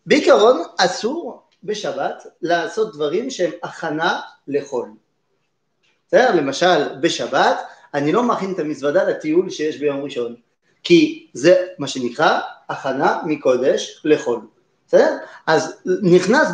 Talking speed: 105 wpm